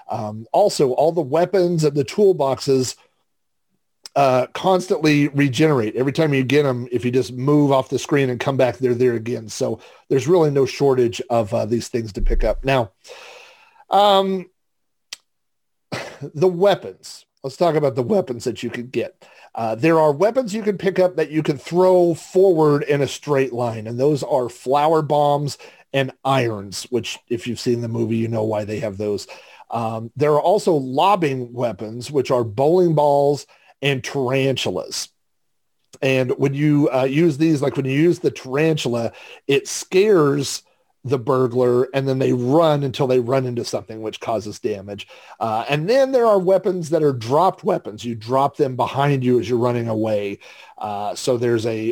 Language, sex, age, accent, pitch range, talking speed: English, male, 40-59, American, 120-155 Hz, 175 wpm